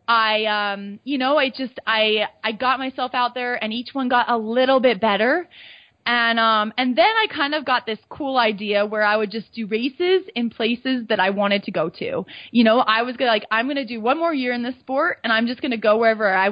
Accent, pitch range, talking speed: American, 205-250 Hz, 250 wpm